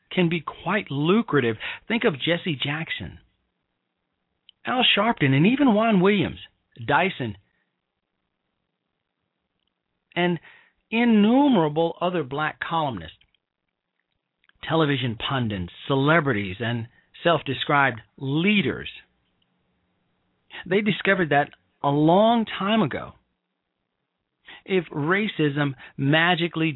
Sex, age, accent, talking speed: male, 40-59, American, 80 wpm